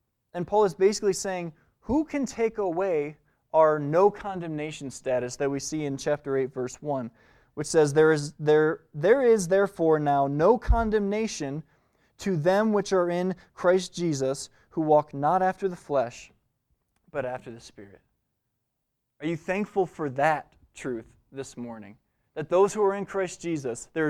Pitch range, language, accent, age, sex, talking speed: 140-185 Hz, English, American, 20-39, male, 160 wpm